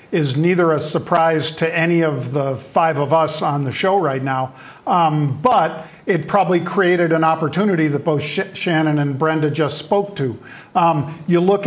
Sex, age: male, 50-69